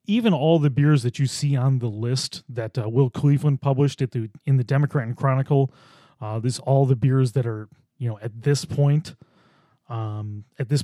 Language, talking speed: English, 205 wpm